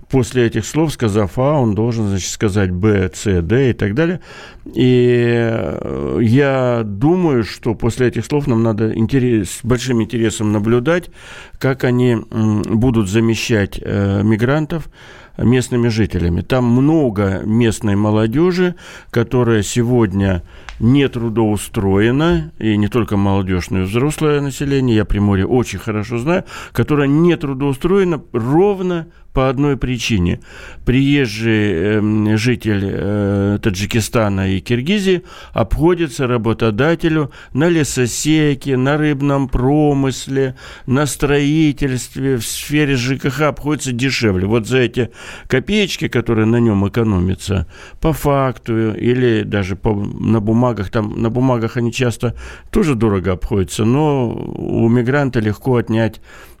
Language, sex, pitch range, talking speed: Russian, male, 110-140 Hz, 120 wpm